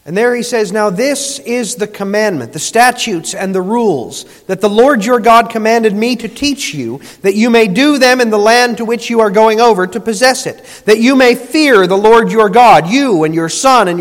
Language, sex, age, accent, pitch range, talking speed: English, male, 40-59, American, 190-240 Hz, 230 wpm